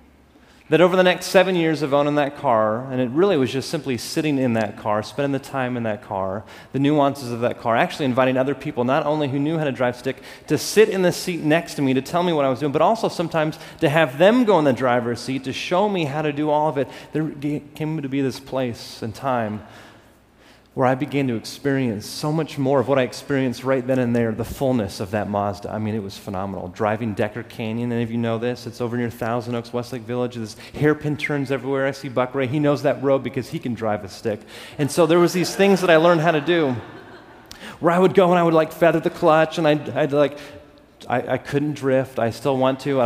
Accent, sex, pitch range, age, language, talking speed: American, male, 125-165 Hz, 30-49, English, 250 wpm